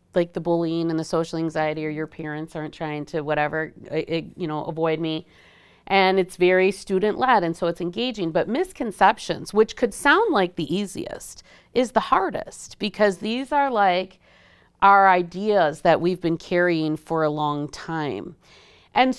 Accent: American